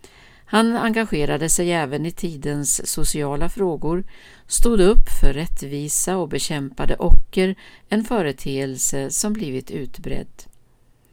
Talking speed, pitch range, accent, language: 110 wpm, 145-205 Hz, native, Swedish